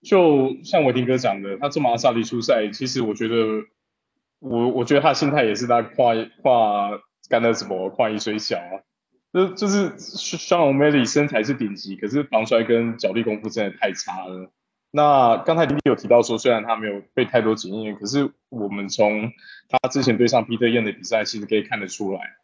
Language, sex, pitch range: Chinese, male, 105-130 Hz